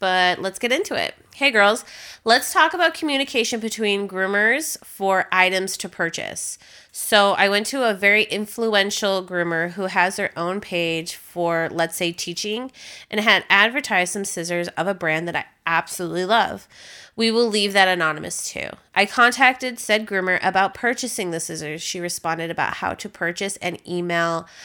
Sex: female